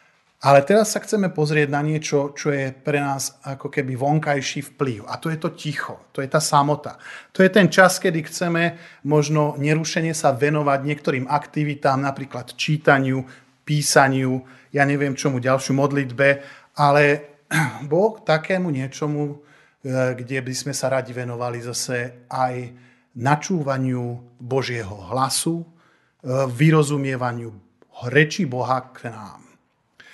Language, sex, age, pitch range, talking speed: Slovak, male, 40-59, 130-160 Hz, 125 wpm